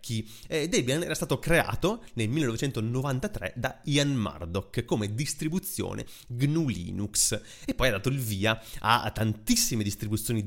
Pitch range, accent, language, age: 110-140 Hz, native, Italian, 30-49